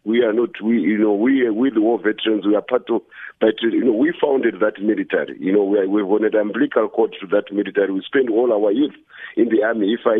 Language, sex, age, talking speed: English, male, 50-69, 255 wpm